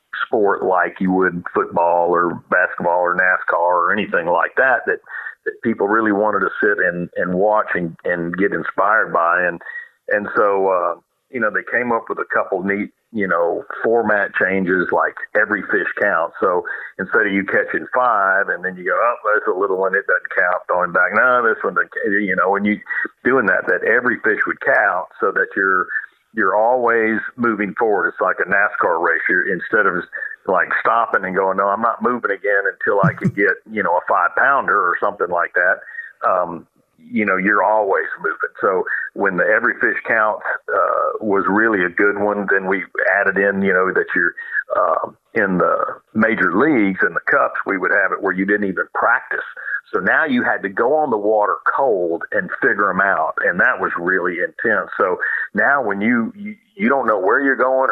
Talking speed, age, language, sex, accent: 200 wpm, 50-69, English, male, American